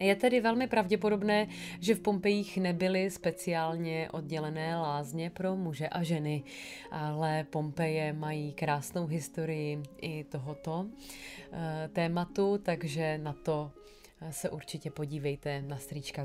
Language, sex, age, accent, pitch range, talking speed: Czech, female, 30-49, native, 155-200 Hz, 115 wpm